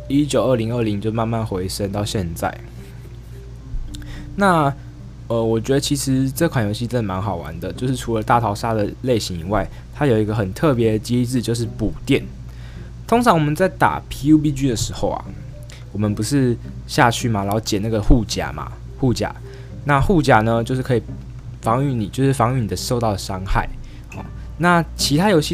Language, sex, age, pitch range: Chinese, male, 20-39, 100-130 Hz